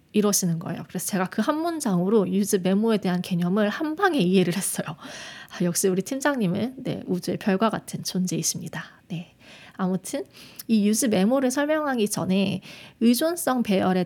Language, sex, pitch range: Korean, female, 180-235 Hz